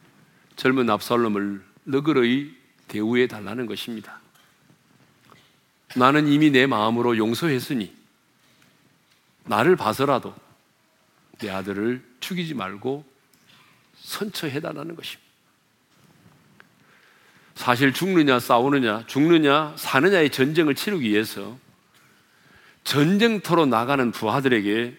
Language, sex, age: Korean, male, 40-59